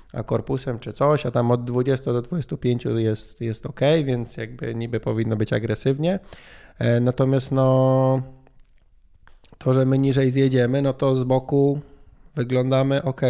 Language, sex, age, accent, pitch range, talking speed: Polish, male, 20-39, native, 115-135 Hz, 145 wpm